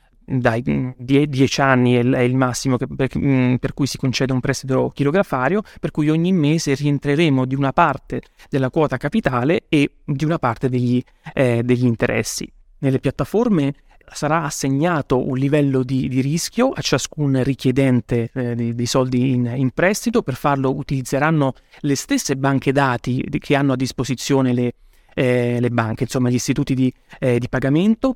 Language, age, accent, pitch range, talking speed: Italian, 30-49, native, 130-155 Hz, 155 wpm